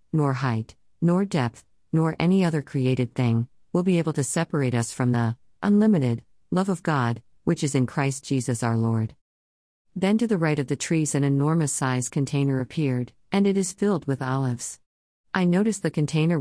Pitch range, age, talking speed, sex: 130-170 Hz, 50-69, 185 wpm, female